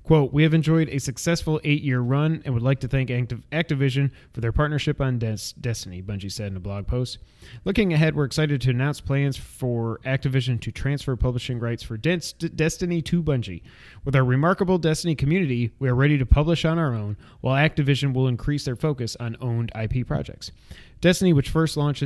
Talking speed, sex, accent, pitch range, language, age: 190 wpm, male, American, 120-150 Hz, English, 30-49